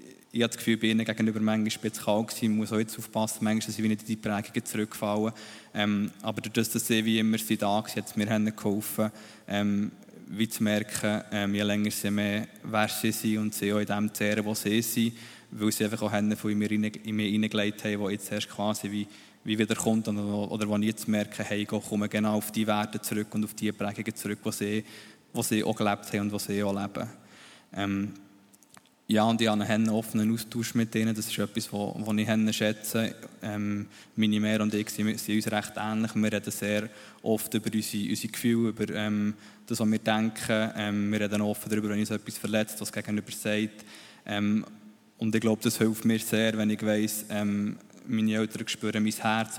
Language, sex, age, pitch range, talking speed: German, male, 20-39, 105-110 Hz, 210 wpm